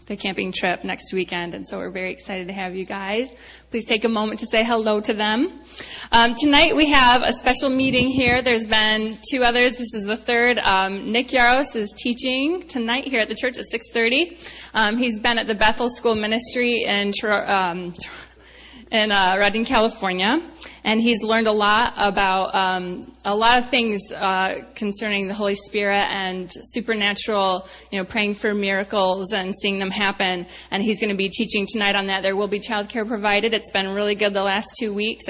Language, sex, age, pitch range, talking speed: English, female, 20-39, 200-235 Hz, 195 wpm